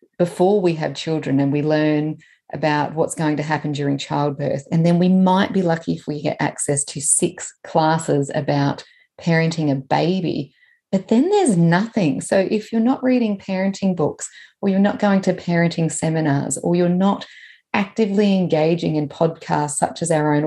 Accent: Australian